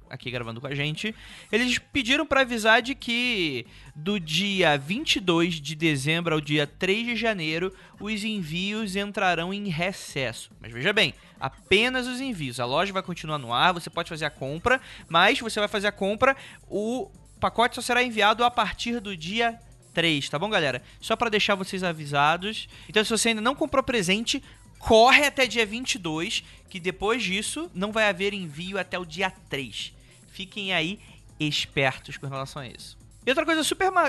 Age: 20-39